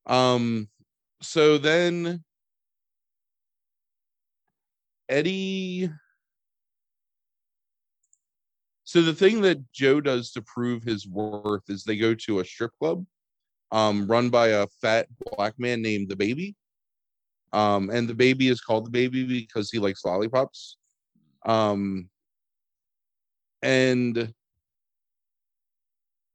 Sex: male